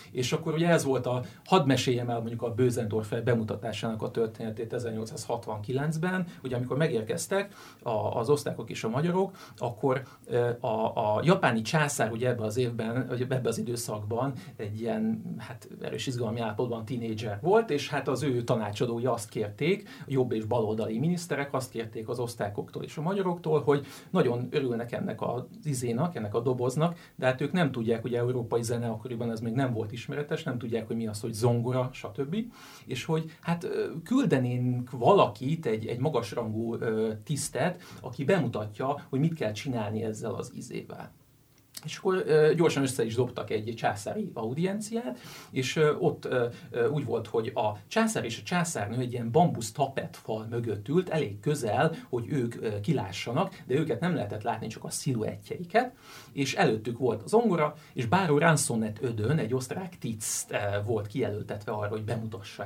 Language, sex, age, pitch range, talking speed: Hungarian, male, 50-69, 115-150 Hz, 160 wpm